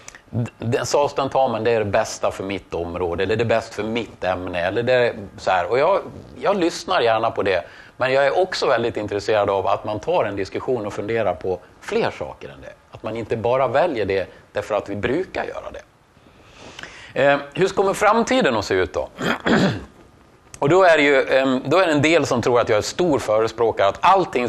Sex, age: male, 30-49